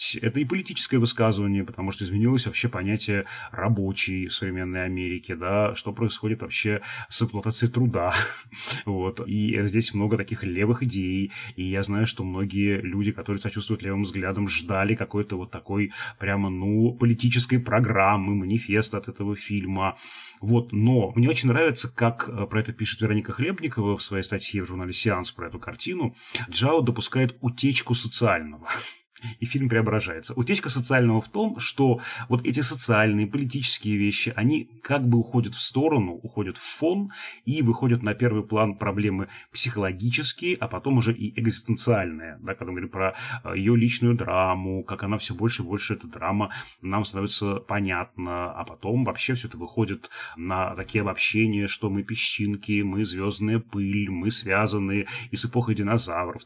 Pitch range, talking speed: 95-120 Hz, 155 wpm